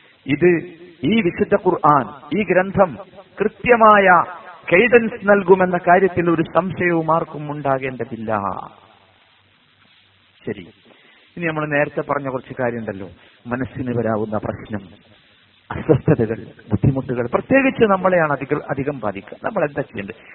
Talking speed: 95 wpm